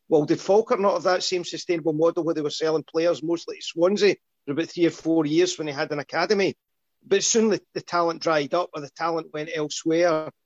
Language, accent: English, British